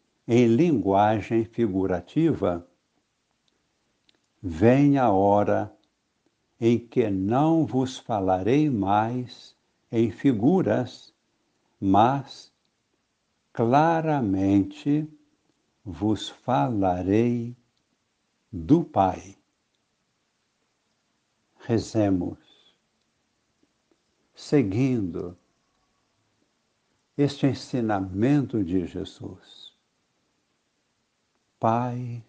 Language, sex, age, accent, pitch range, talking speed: Portuguese, male, 70-89, Brazilian, 100-130 Hz, 50 wpm